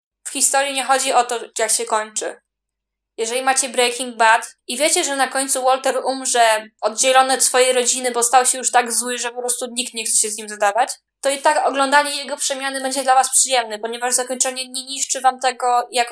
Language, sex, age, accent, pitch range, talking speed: Polish, female, 10-29, native, 245-275 Hz, 210 wpm